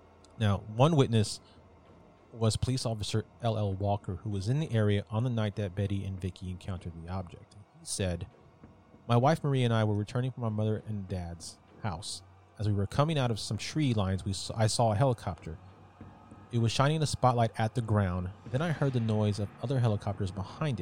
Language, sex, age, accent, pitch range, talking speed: English, male, 30-49, American, 100-125 Hz, 200 wpm